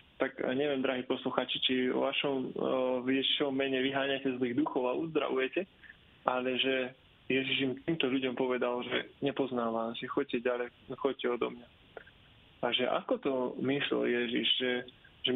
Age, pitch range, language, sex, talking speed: 20-39, 125-135 Hz, Slovak, male, 155 wpm